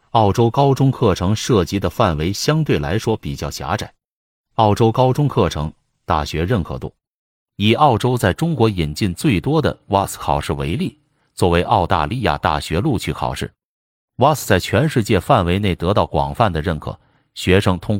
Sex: male